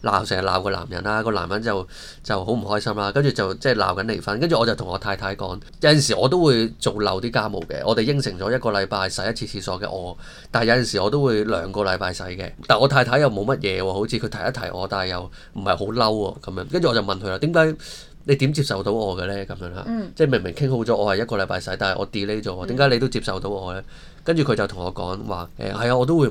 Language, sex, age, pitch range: Chinese, male, 20-39, 95-130 Hz